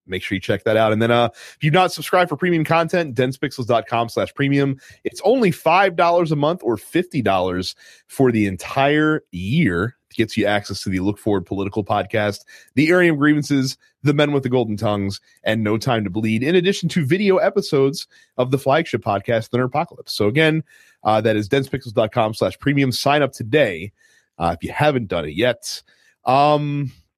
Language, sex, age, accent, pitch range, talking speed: English, male, 30-49, American, 100-150 Hz, 190 wpm